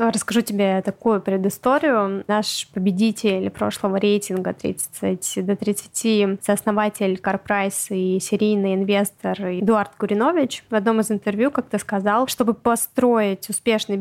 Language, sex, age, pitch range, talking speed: Russian, female, 20-39, 200-225 Hz, 115 wpm